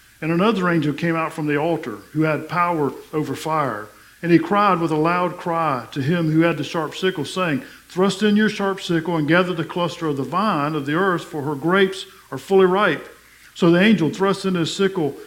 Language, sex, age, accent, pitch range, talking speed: English, male, 50-69, American, 135-170 Hz, 220 wpm